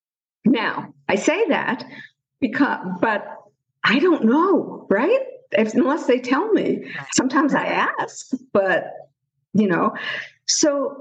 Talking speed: 115 wpm